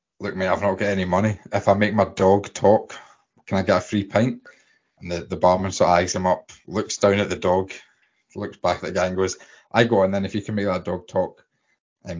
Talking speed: 255 wpm